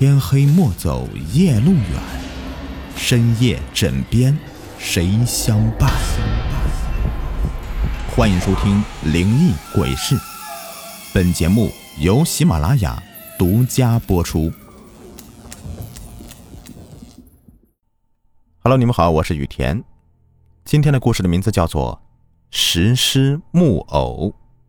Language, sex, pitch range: Chinese, male, 85-120 Hz